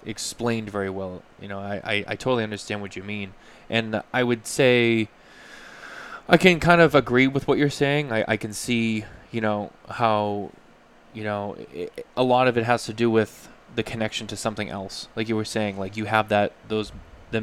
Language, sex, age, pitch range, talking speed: English, male, 20-39, 105-120 Hz, 200 wpm